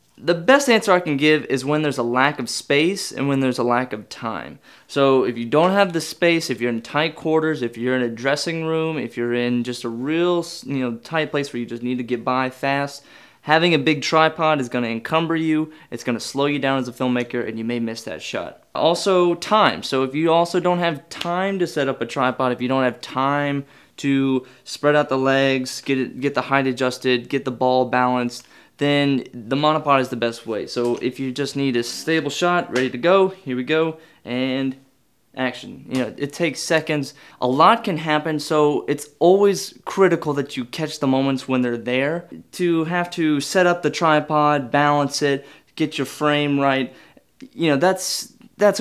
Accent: American